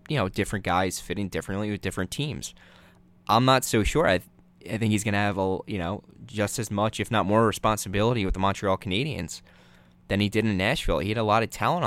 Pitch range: 95-115 Hz